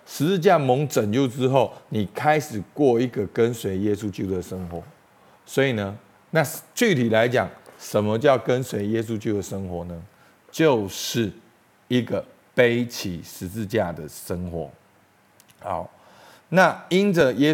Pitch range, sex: 95-135 Hz, male